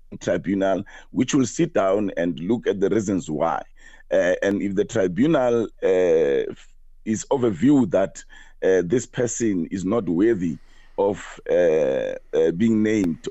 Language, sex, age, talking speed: English, male, 50-69, 150 wpm